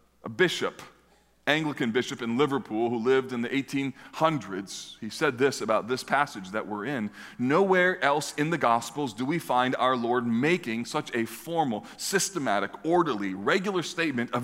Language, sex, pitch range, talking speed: English, male, 115-150 Hz, 160 wpm